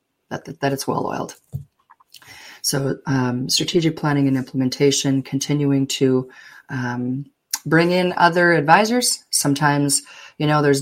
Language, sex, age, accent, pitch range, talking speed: English, female, 30-49, American, 135-150 Hz, 120 wpm